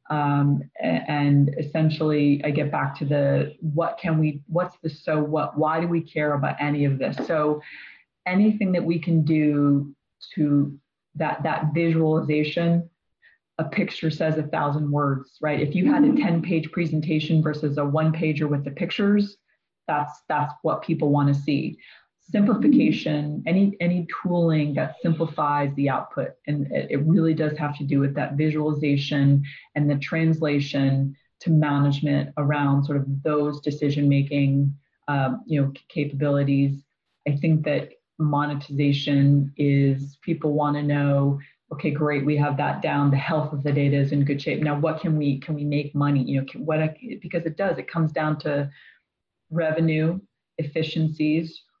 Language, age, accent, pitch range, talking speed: English, 30-49, American, 145-160 Hz, 160 wpm